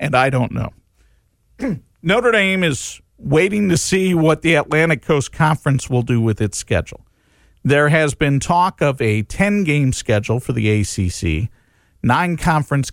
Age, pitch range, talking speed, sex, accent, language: 50-69, 105-150 Hz, 155 wpm, male, American, English